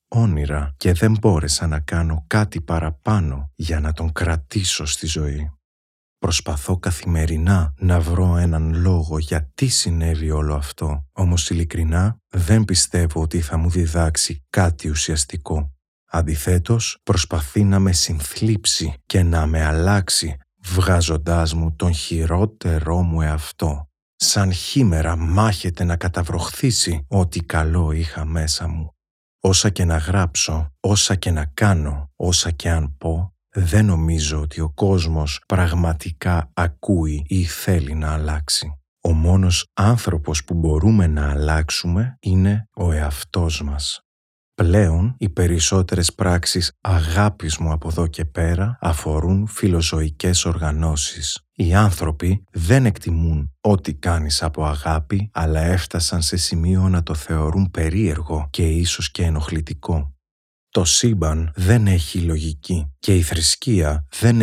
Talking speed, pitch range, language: 125 wpm, 80-95 Hz, Greek